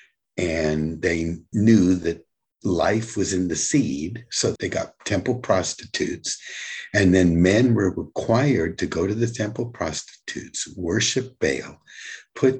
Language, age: English, 60-79